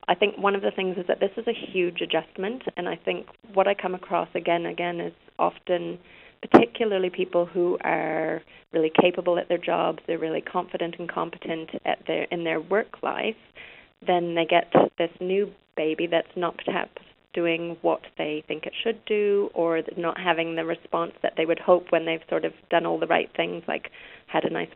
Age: 30-49